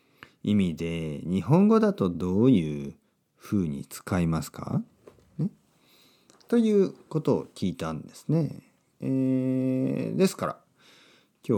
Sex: male